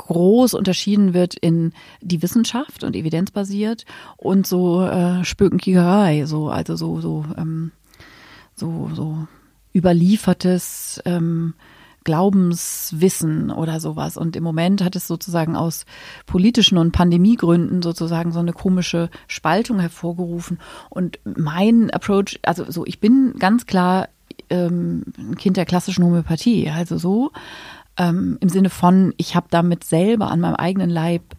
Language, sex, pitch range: German, female, 165-195 Hz